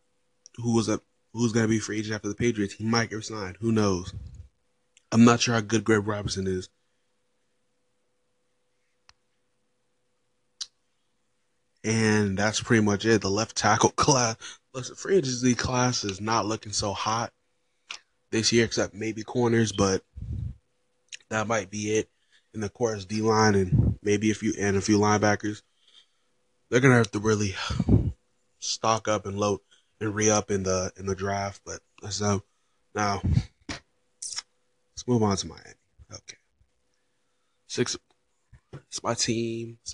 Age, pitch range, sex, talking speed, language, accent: 20-39, 105-120 Hz, male, 145 wpm, English, American